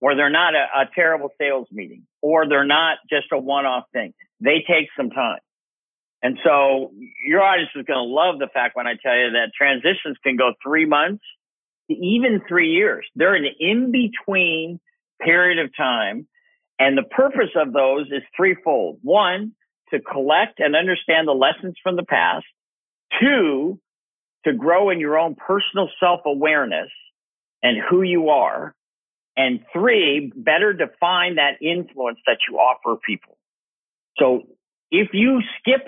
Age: 50-69